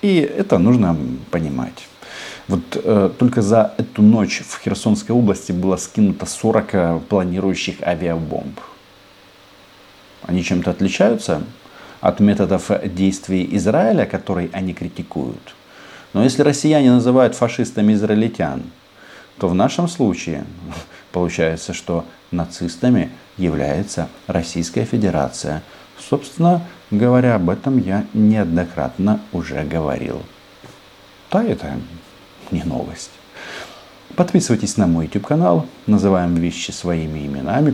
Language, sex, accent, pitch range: Russian, male, native, 85-110 Hz